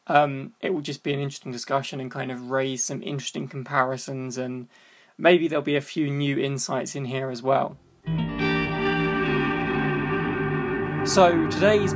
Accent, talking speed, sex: British, 145 wpm, male